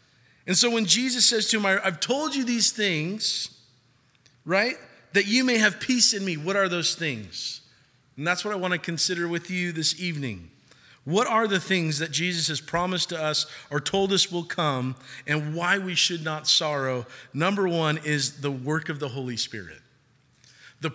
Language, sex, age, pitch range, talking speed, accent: English, male, 40-59, 135-180 Hz, 190 wpm, American